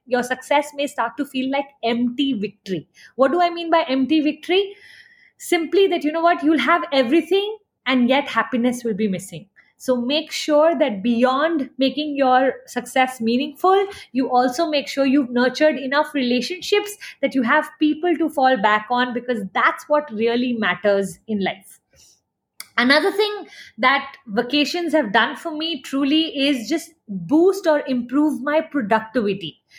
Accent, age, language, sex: Indian, 20-39, English, female